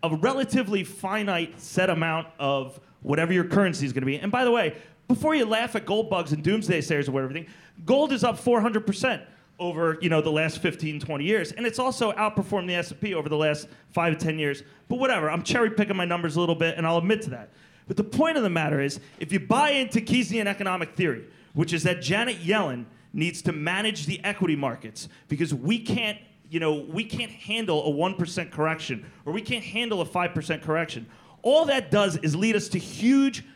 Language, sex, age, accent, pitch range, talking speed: English, male, 30-49, American, 155-220 Hz, 215 wpm